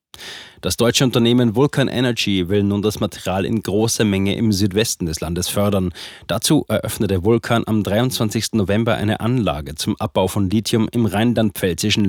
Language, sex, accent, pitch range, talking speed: German, male, German, 100-115 Hz, 155 wpm